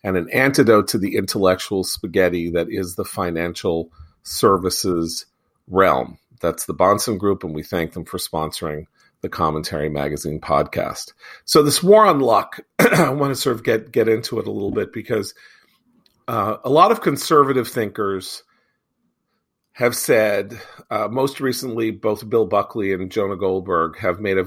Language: English